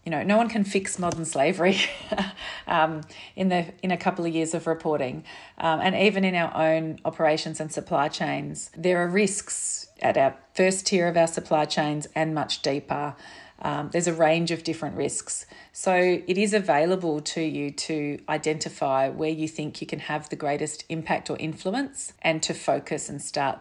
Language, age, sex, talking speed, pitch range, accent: English, 40-59, female, 185 wpm, 145-170 Hz, Australian